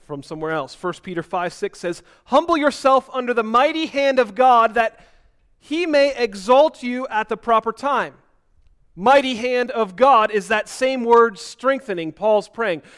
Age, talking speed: 30-49, 165 wpm